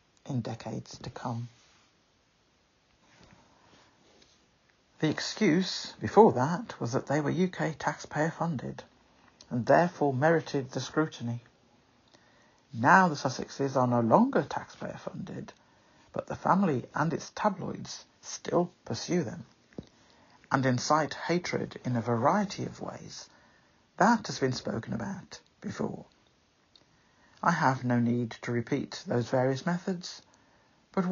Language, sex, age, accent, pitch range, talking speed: English, male, 60-79, British, 125-180 Hz, 120 wpm